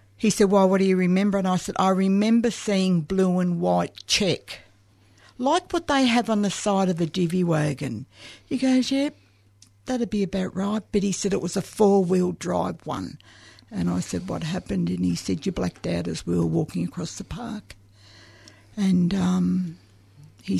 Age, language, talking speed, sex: 60-79, English, 190 wpm, female